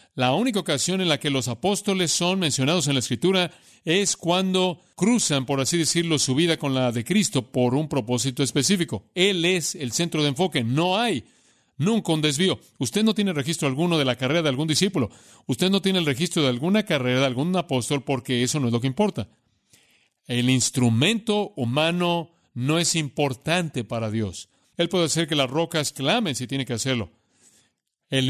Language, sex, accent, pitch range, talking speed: Spanish, male, Mexican, 125-170 Hz, 190 wpm